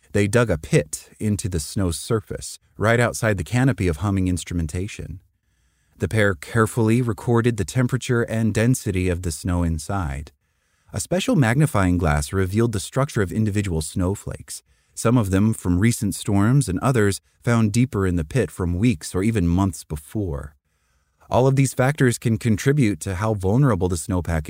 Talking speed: 165 wpm